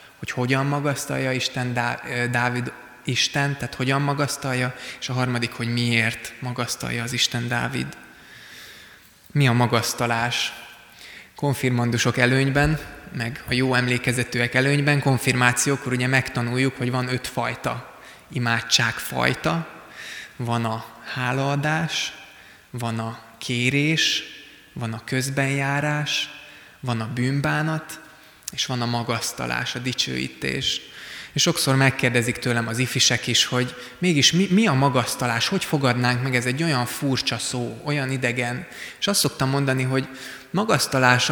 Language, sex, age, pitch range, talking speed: Hungarian, male, 20-39, 120-135 Hz, 125 wpm